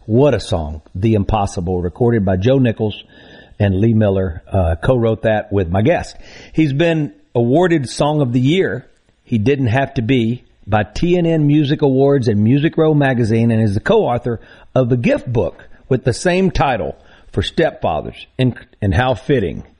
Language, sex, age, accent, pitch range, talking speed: English, male, 50-69, American, 105-145 Hz, 170 wpm